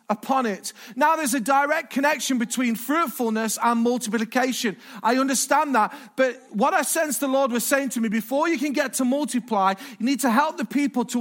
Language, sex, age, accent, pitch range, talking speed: English, male, 40-59, British, 225-275 Hz, 205 wpm